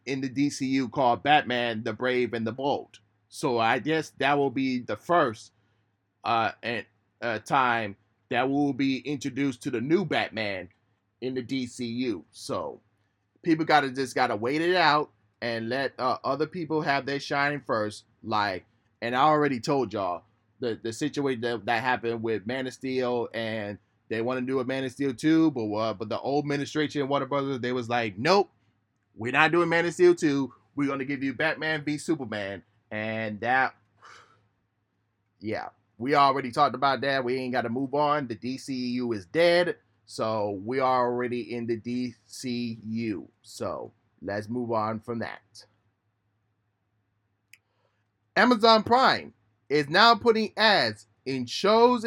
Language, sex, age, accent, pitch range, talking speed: English, male, 20-39, American, 110-145 Hz, 165 wpm